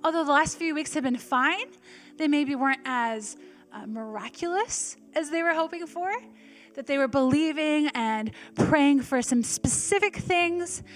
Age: 10-29